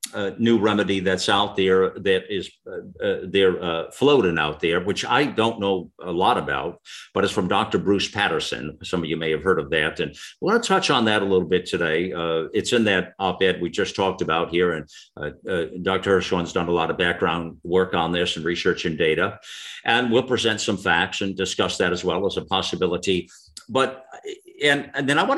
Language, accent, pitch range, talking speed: English, American, 95-145 Hz, 220 wpm